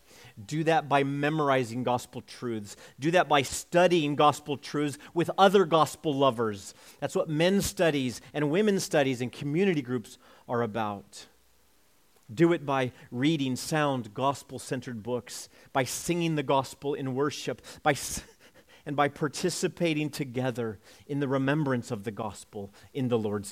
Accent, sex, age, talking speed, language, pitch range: American, male, 40-59, 140 wpm, English, 115-155 Hz